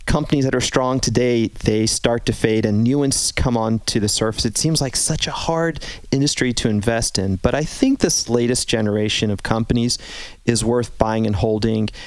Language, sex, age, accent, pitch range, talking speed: English, male, 30-49, American, 110-120 Hz, 195 wpm